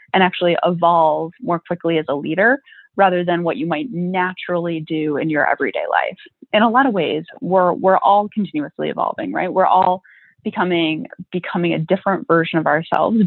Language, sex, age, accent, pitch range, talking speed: English, female, 20-39, American, 165-210 Hz, 175 wpm